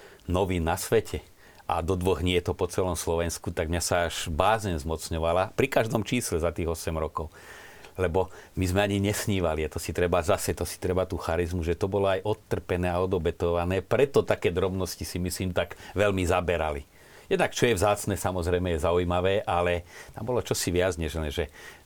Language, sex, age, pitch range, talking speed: Slovak, male, 40-59, 85-105 Hz, 190 wpm